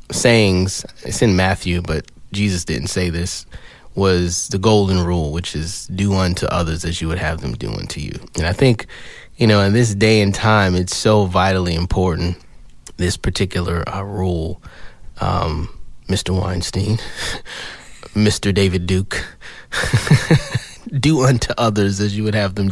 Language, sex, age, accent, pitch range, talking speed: English, male, 20-39, American, 90-115 Hz, 155 wpm